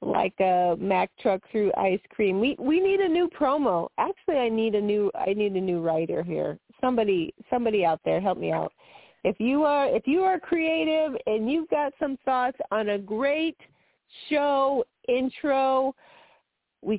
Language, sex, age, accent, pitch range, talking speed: English, female, 40-59, American, 205-310 Hz, 175 wpm